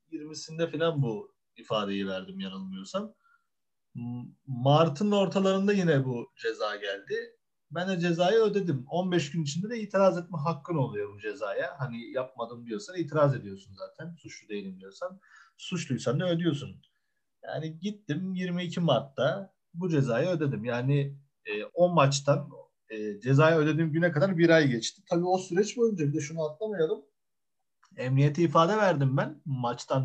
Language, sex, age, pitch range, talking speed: Turkish, male, 30-49, 135-185 Hz, 135 wpm